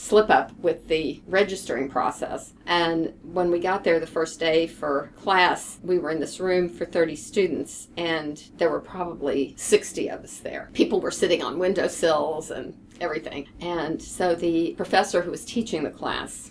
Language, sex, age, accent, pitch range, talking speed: English, female, 50-69, American, 170-210 Hz, 175 wpm